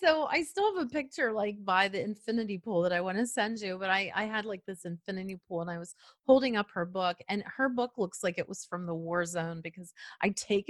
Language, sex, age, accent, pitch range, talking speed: English, female, 30-49, American, 180-240 Hz, 260 wpm